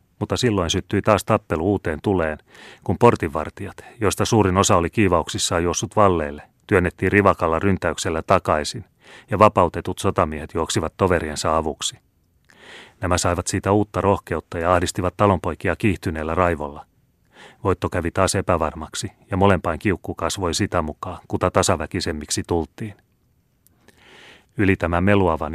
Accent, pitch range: native, 80-100 Hz